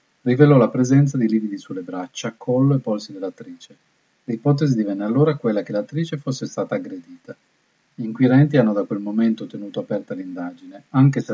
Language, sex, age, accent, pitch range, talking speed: Italian, male, 40-59, native, 110-150 Hz, 165 wpm